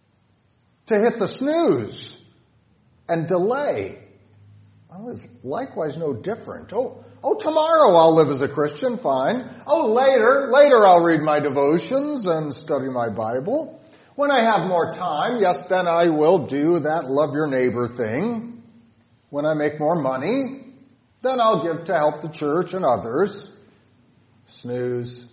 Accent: American